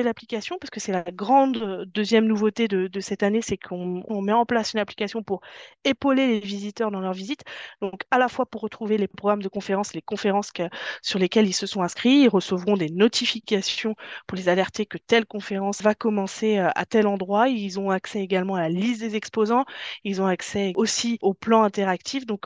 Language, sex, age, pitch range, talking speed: French, female, 20-39, 195-235 Hz, 210 wpm